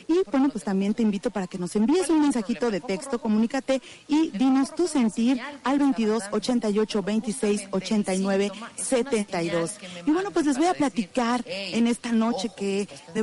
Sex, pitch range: female, 200-260 Hz